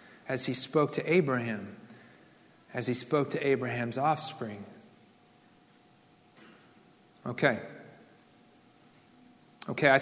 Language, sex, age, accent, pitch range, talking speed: English, male, 40-59, American, 145-210 Hz, 85 wpm